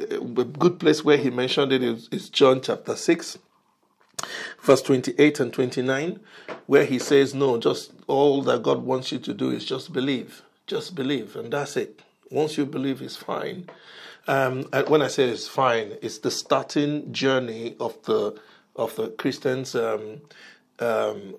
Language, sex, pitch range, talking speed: English, male, 120-155 Hz, 170 wpm